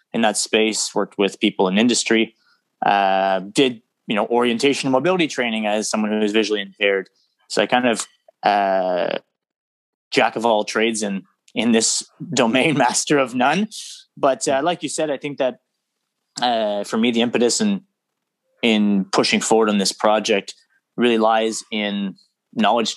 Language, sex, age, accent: English, male, 20-39, American